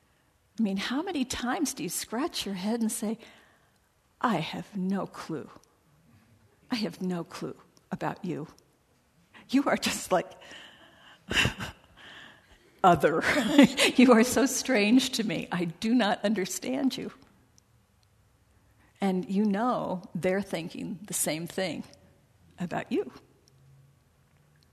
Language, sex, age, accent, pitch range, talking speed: English, female, 50-69, American, 170-225 Hz, 115 wpm